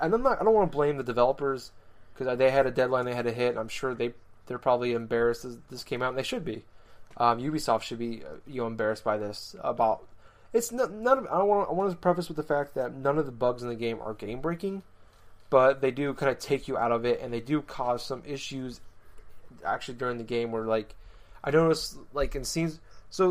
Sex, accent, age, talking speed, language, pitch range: male, American, 20-39, 225 wpm, English, 115-145 Hz